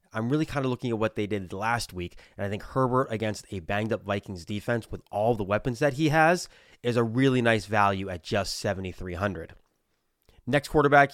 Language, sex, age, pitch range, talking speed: English, male, 20-39, 105-135 Hz, 200 wpm